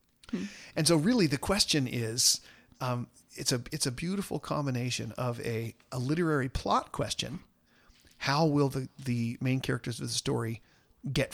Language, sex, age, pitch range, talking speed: English, male, 40-59, 115-145 Hz, 155 wpm